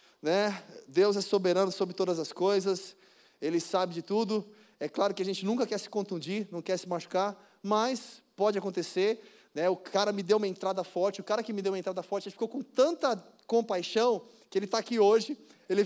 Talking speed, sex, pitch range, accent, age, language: 210 wpm, male, 175-205 Hz, Brazilian, 20-39, Portuguese